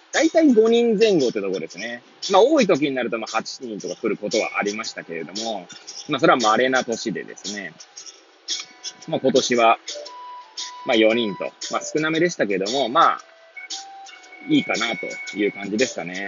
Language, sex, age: Japanese, male, 20-39